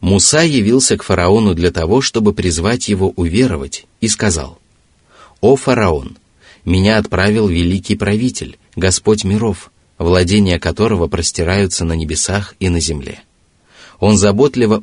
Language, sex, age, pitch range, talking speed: Russian, male, 30-49, 85-110 Hz, 120 wpm